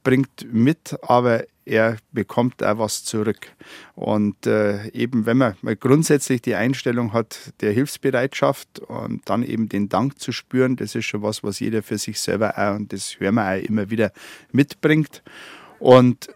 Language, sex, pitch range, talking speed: German, male, 110-130 Hz, 170 wpm